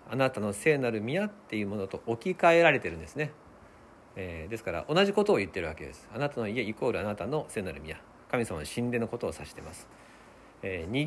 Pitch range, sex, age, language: 100-165 Hz, male, 50-69, Japanese